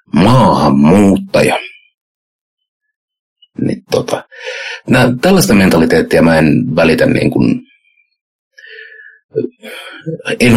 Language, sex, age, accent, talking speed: Finnish, male, 60-79, native, 60 wpm